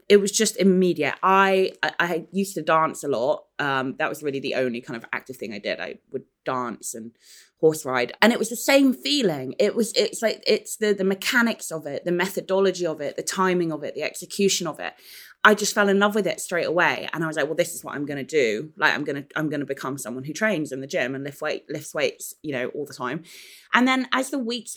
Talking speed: 250 wpm